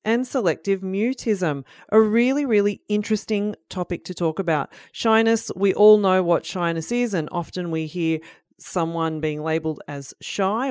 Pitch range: 165-225 Hz